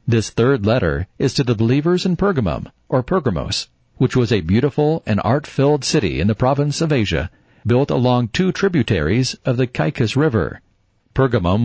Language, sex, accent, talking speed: English, male, American, 165 wpm